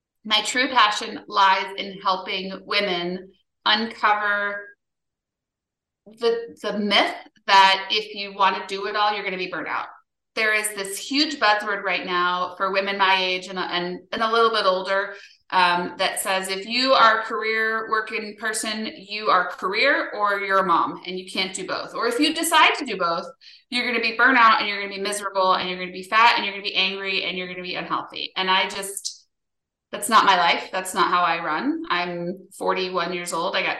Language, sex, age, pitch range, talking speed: English, female, 30-49, 185-220 Hz, 215 wpm